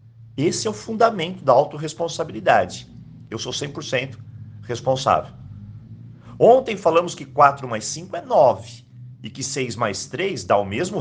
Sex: male